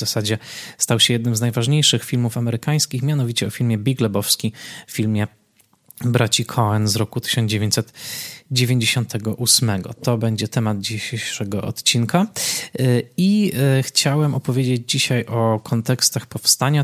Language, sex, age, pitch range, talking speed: Polish, male, 20-39, 110-125 Hz, 120 wpm